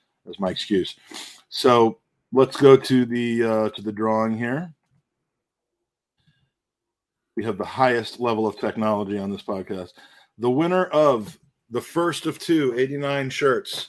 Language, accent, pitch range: English, American, 110-145 Hz